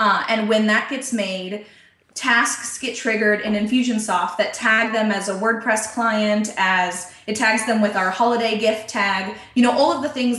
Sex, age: female, 20-39